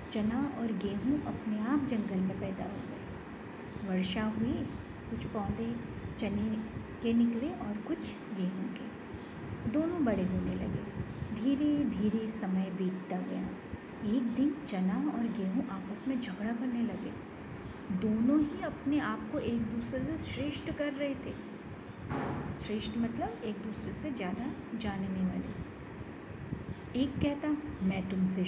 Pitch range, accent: 210-260 Hz, native